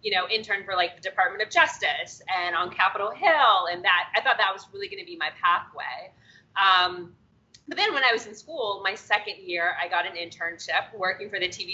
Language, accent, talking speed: English, American, 225 wpm